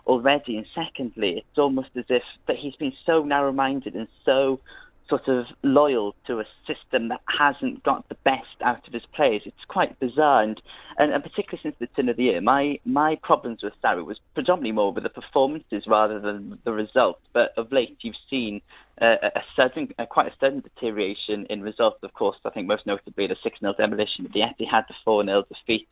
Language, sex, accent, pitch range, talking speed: English, male, British, 115-140 Hz, 205 wpm